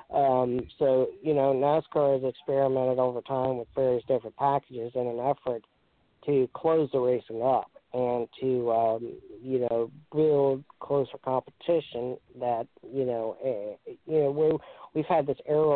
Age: 40-59